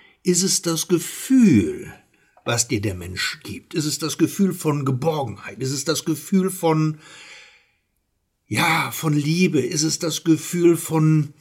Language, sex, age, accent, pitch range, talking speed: German, male, 60-79, German, 125-180 Hz, 145 wpm